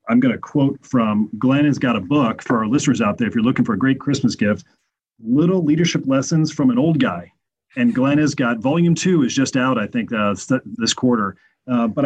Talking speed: 230 wpm